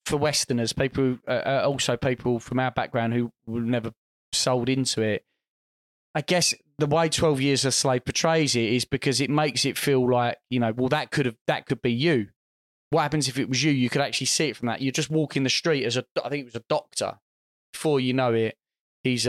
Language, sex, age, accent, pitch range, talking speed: English, male, 20-39, British, 115-140 Hz, 230 wpm